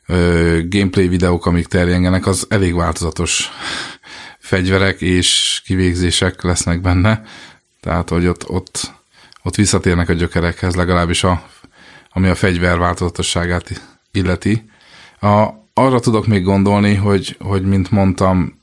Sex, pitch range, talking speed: male, 85-95 Hz, 115 wpm